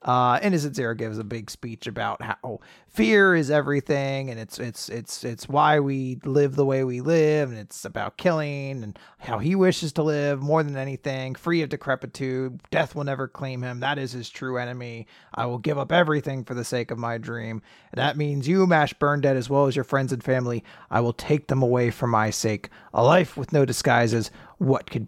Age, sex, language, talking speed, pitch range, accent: 30-49, male, English, 220 wpm, 115-155 Hz, American